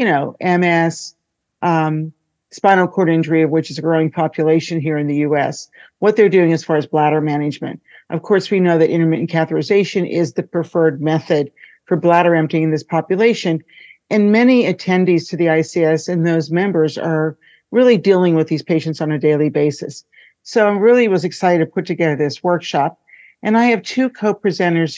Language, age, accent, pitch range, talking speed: English, 50-69, American, 160-190 Hz, 185 wpm